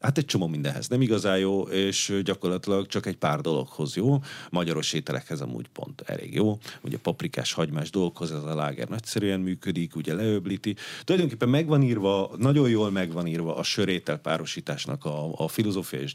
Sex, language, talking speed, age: male, Hungarian, 170 wpm, 40-59